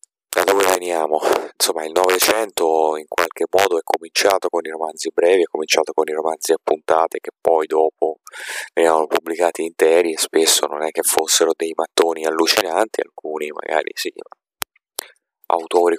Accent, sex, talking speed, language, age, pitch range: native, male, 145 wpm, Italian, 30-49, 80-105 Hz